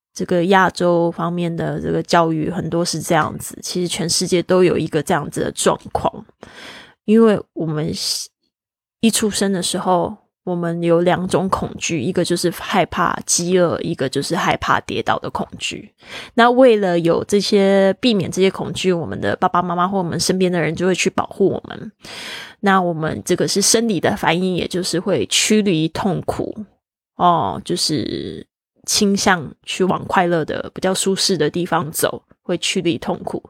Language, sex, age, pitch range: Chinese, female, 20-39, 175-210 Hz